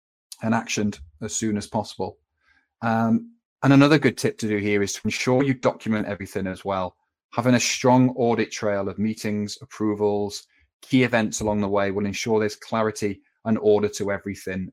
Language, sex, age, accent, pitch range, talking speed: English, male, 30-49, British, 100-115 Hz, 175 wpm